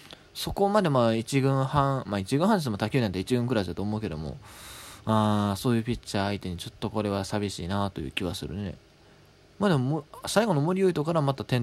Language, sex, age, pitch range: Japanese, male, 20-39, 100-150 Hz